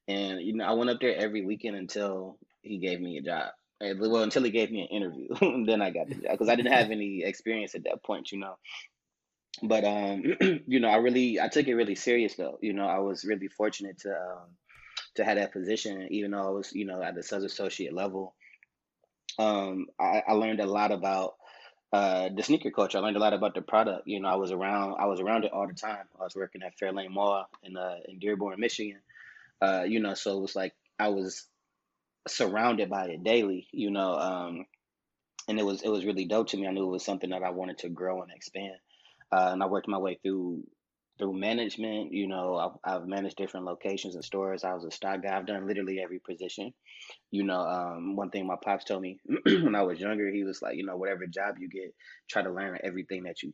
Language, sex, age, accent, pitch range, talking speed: English, male, 20-39, American, 95-105 Hz, 230 wpm